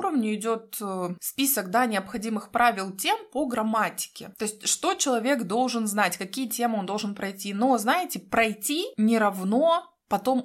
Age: 20-39